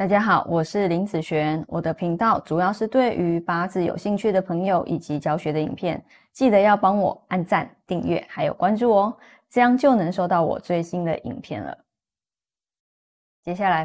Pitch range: 175-240 Hz